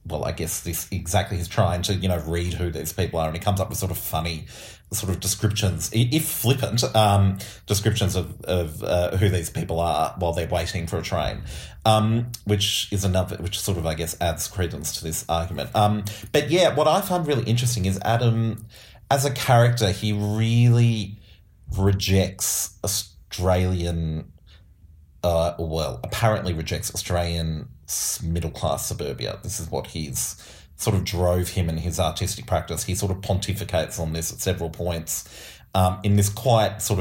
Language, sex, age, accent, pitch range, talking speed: English, male, 30-49, Australian, 85-110 Hz, 175 wpm